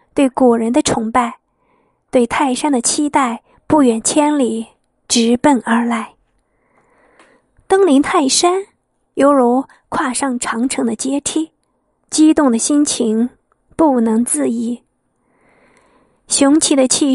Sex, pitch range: female, 245-300 Hz